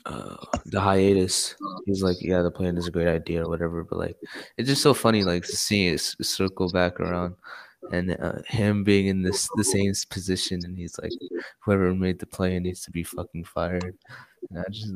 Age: 20-39